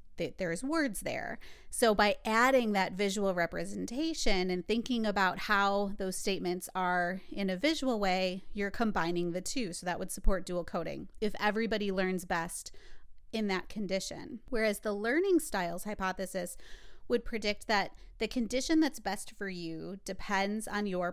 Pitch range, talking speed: 185-215 Hz, 155 wpm